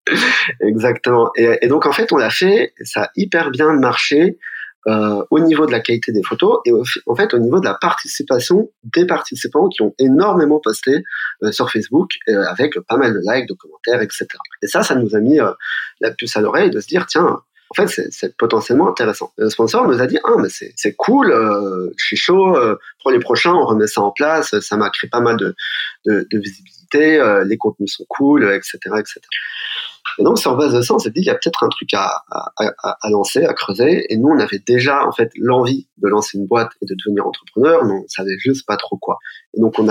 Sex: male